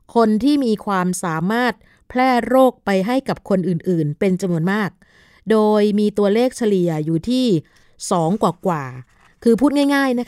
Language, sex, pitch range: Thai, female, 180-230 Hz